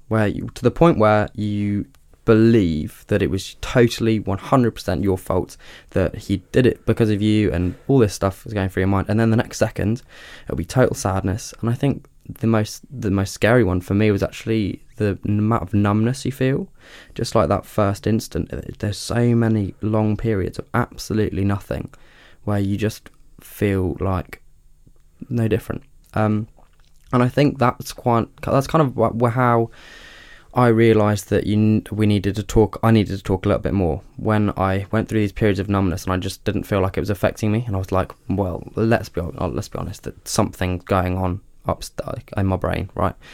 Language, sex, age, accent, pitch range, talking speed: English, male, 10-29, British, 95-115 Hz, 195 wpm